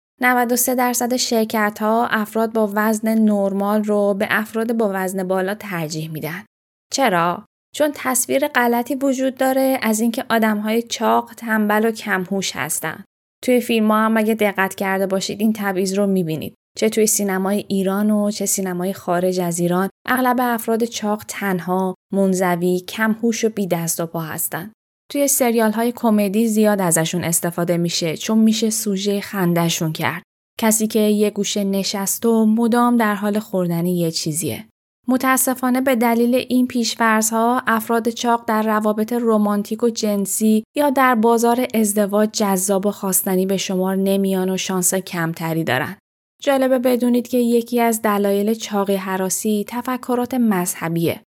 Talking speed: 145 wpm